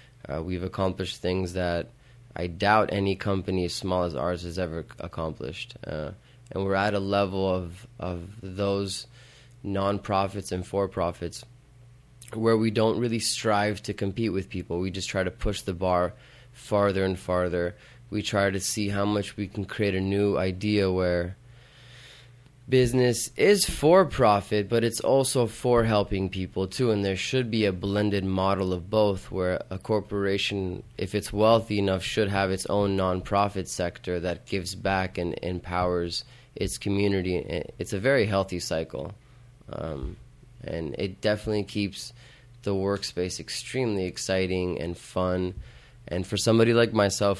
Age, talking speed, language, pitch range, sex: 20-39, 155 wpm, English, 95-115 Hz, male